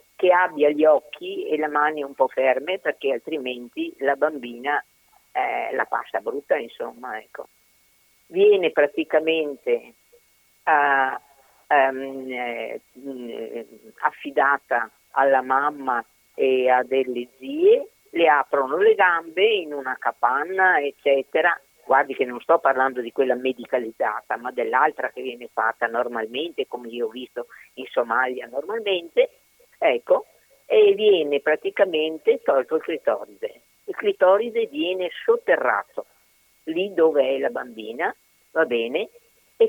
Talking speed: 120 wpm